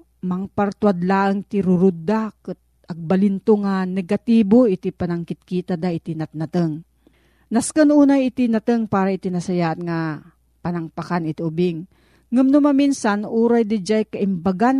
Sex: female